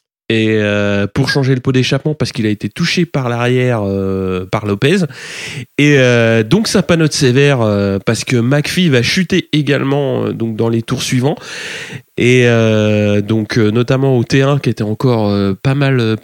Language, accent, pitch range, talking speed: French, French, 115-155 Hz, 185 wpm